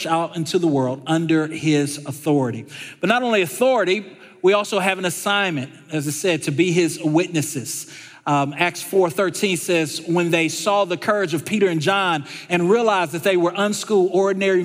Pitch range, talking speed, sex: 145-190 Hz, 175 wpm, male